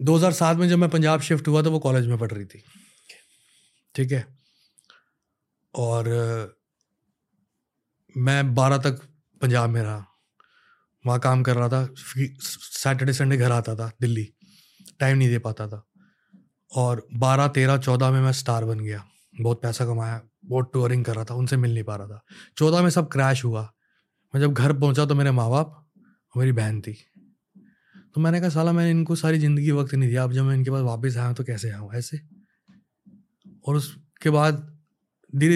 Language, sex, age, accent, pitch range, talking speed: Hindi, male, 30-49, native, 120-155 Hz, 170 wpm